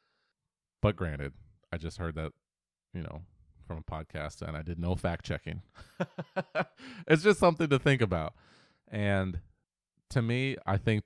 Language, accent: English, American